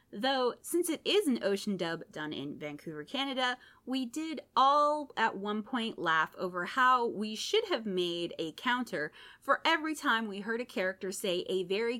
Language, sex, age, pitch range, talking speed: English, female, 20-39, 180-275 Hz, 180 wpm